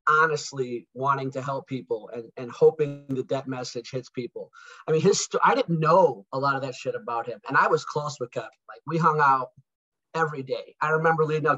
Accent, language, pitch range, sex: American, English, 135-165 Hz, male